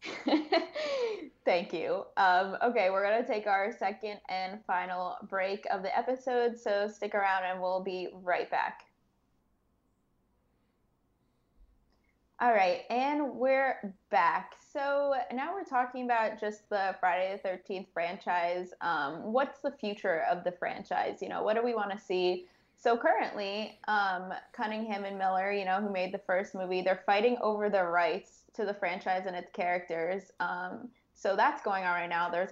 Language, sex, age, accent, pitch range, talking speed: English, female, 20-39, American, 180-235 Hz, 160 wpm